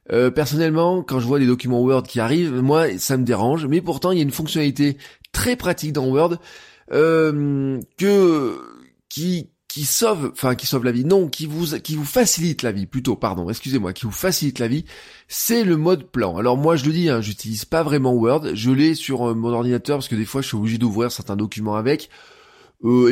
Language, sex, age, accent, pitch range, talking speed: French, male, 20-39, French, 115-155 Hz, 210 wpm